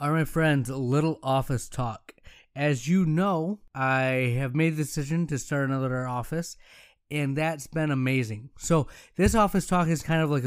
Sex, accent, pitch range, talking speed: male, American, 130-170 Hz, 180 wpm